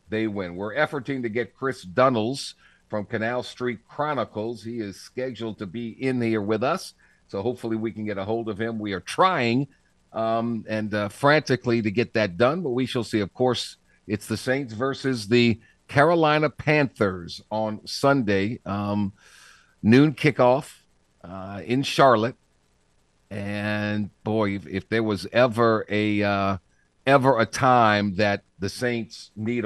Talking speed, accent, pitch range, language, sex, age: 160 wpm, American, 90-125 Hz, English, male, 50-69